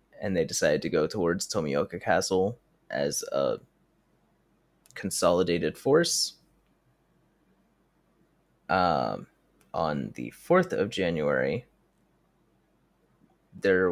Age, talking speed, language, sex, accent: 20-39, 80 wpm, English, male, American